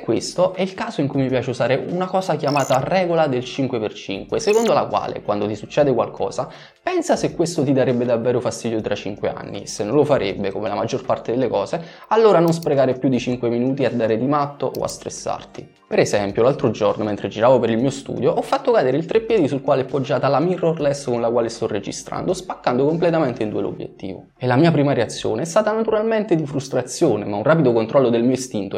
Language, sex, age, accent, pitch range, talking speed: Italian, male, 20-39, native, 115-165 Hz, 215 wpm